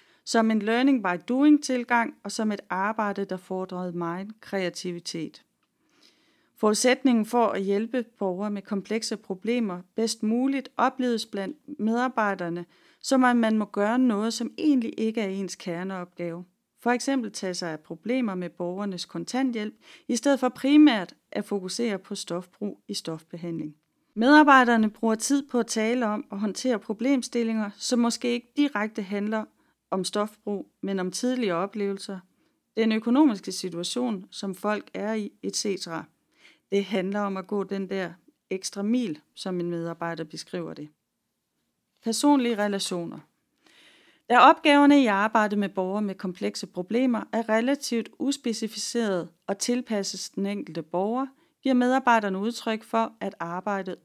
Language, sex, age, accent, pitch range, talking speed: Danish, female, 30-49, native, 190-245 Hz, 135 wpm